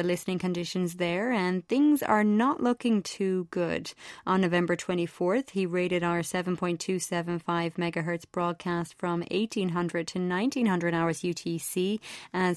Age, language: 30-49, English